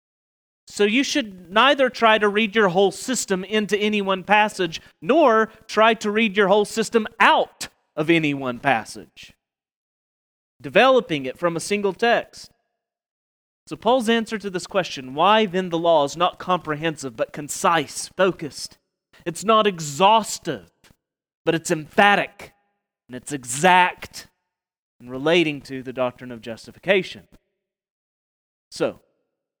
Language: English